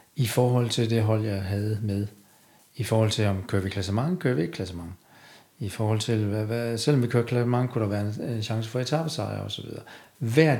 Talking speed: 245 wpm